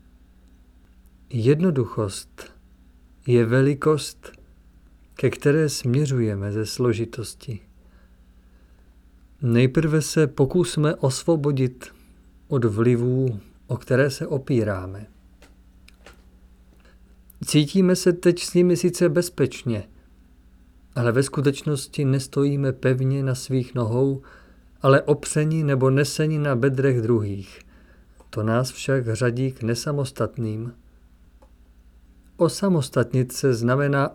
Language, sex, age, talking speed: Czech, male, 50-69, 85 wpm